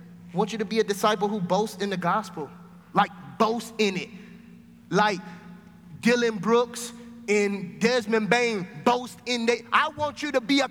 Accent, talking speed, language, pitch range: American, 180 wpm, English, 205-275 Hz